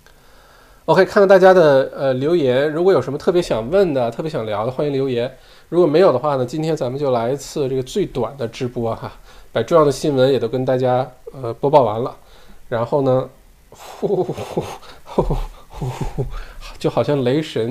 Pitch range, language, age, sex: 120-160 Hz, Chinese, 20-39, male